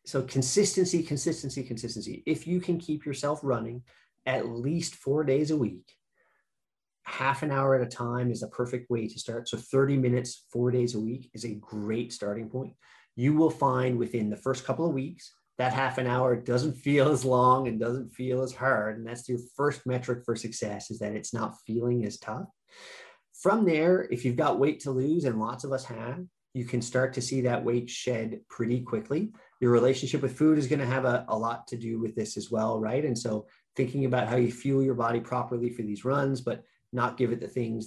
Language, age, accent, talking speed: English, 30-49, American, 215 wpm